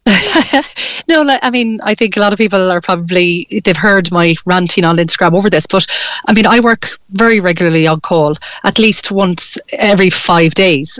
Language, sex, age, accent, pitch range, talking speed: English, female, 30-49, Irish, 165-205 Hz, 185 wpm